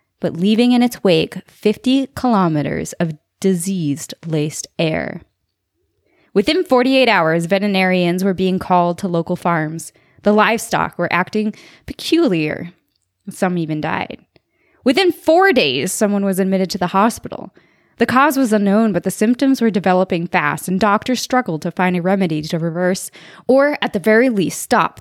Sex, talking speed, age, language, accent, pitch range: female, 150 wpm, 20-39, English, American, 175-225 Hz